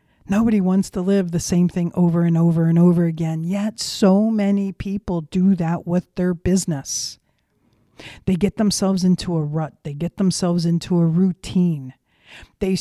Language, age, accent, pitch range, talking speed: English, 50-69, American, 160-195 Hz, 165 wpm